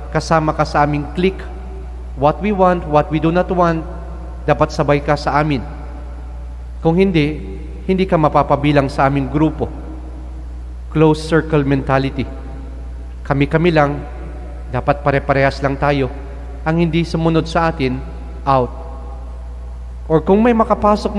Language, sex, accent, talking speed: English, male, Filipino, 125 wpm